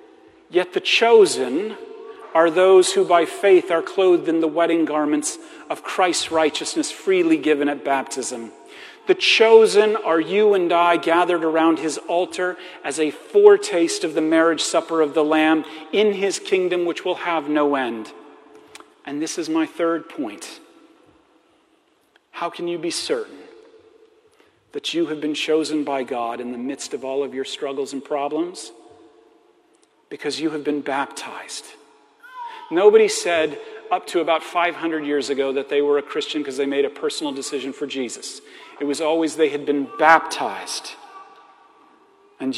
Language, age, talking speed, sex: English, 40-59, 155 wpm, male